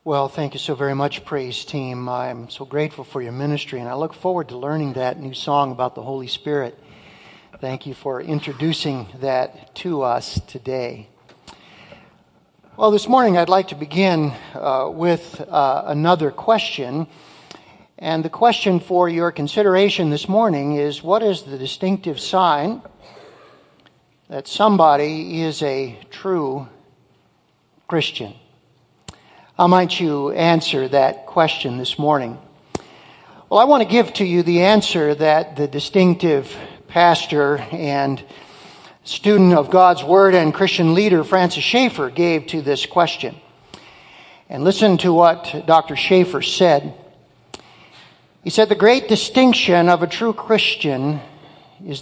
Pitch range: 145-185 Hz